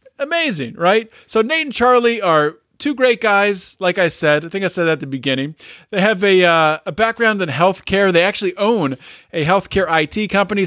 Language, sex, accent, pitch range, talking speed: English, male, American, 160-215 Hz, 200 wpm